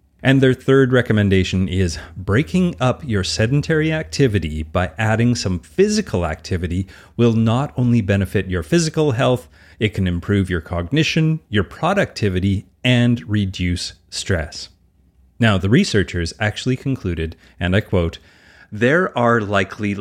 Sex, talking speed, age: male, 130 wpm, 30-49